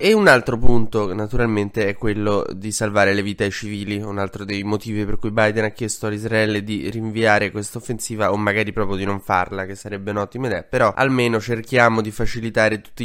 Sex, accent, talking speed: male, native, 200 wpm